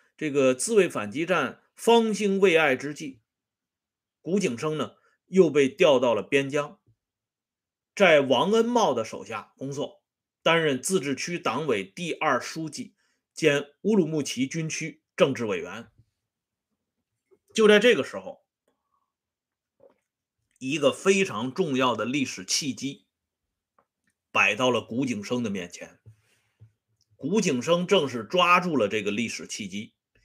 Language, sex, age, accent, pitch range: Swedish, male, 30-49, Chinese, 125-195 Hz